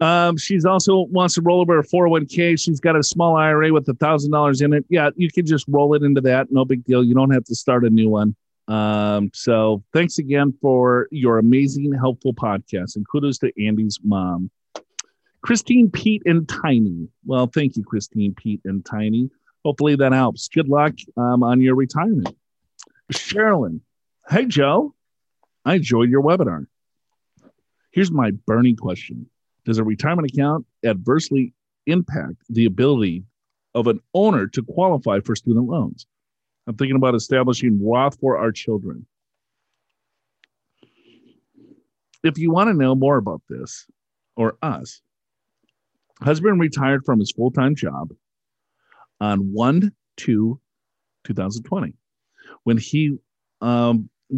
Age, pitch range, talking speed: 40-59, 110-150 Hz, 140 wpm